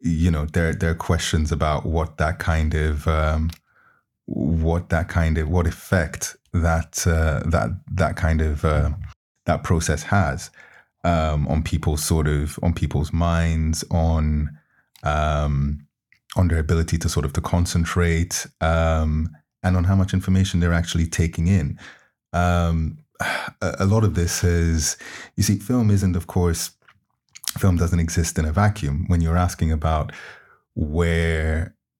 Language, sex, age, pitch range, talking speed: English, male, 20-39, 80-85 Hz, 150 wpm